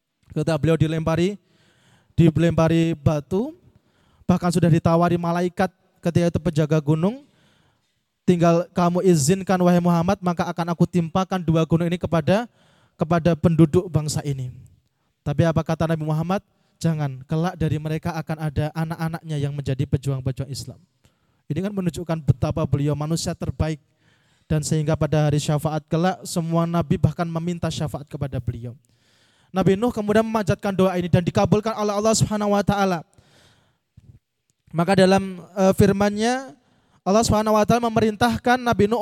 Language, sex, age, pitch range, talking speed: Indonesian, male, 20-39, 155-200 Hz, 135 wpm